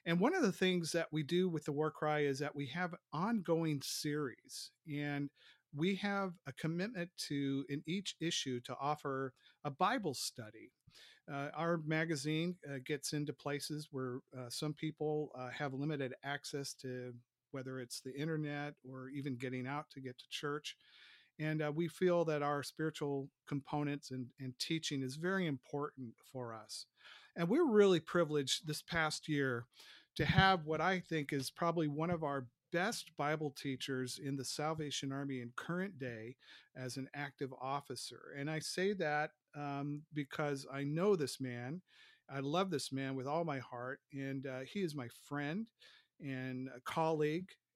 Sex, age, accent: male, 50-69, American